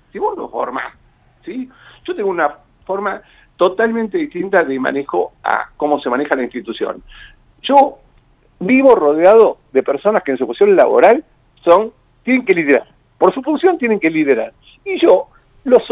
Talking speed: 160 wpm